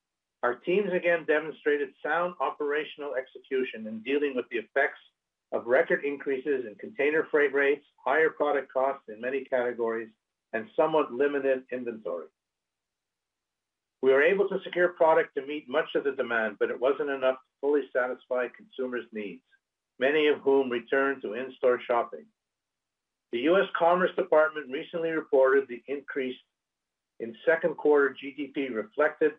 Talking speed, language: 145 wpm, English